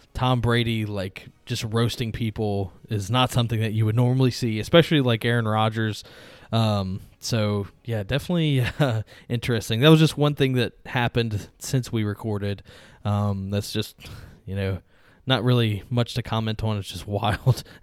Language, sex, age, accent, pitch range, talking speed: English, male, 20-39, American, 105-130 Hz, 160 wpm